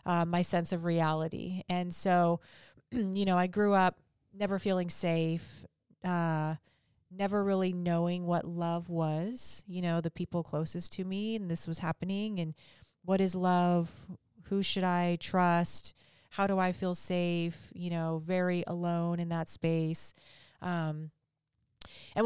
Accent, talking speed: American, 150 wpm